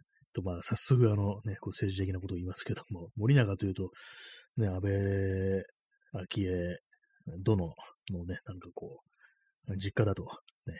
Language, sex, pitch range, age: Japanese, male, 95-140 Hz, 30-49